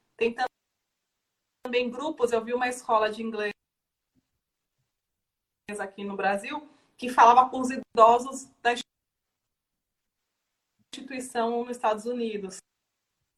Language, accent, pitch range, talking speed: Portuguese, Brazilian, 205-245 Hz, 100 wpm